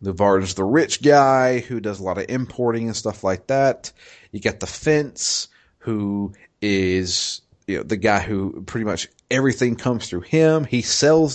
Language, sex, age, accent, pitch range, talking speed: English, male, 30-49, American, 95-120 Hz, 180 wpm